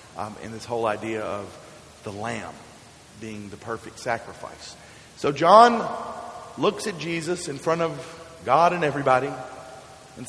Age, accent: 40-59, American